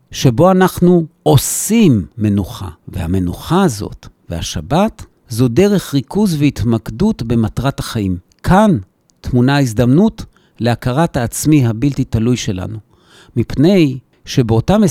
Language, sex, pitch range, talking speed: Hebrew, male, 110-160 Hz, 95 wpm